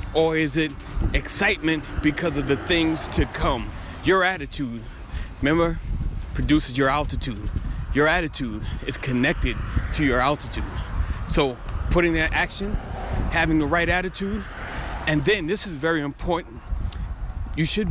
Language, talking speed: English, 130 wpm